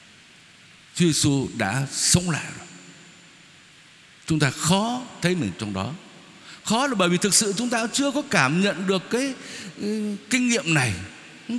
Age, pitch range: 60-79, 145-210 Hz